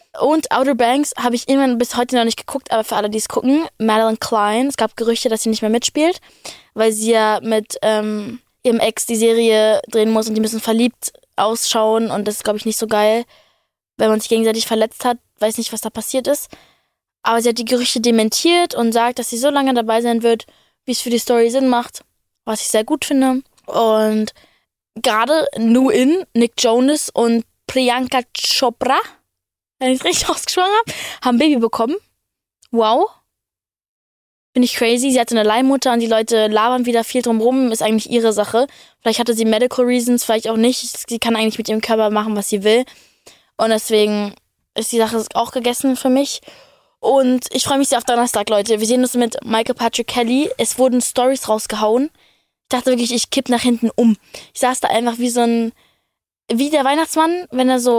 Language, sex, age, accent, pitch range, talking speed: German, female, 20-39, German, 220-255 Hz, 200 wpm